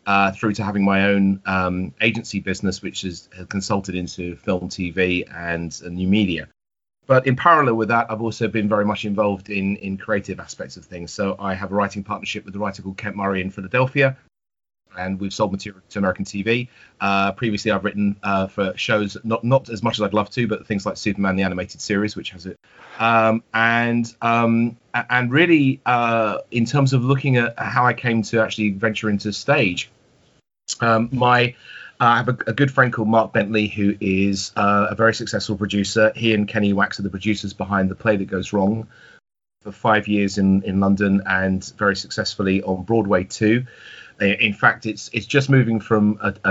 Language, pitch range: English, 95-115 Hz